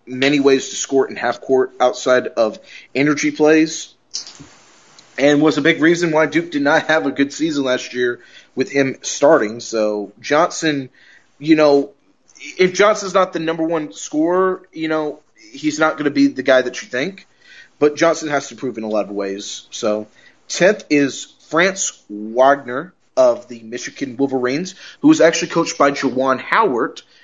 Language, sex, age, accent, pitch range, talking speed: English, male, 30-49, American, 125-180 Hz, 170 wpm